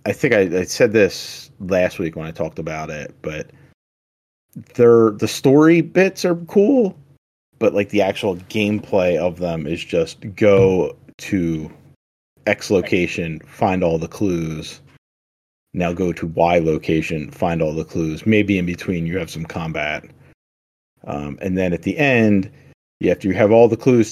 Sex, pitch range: male, 80-105 Hz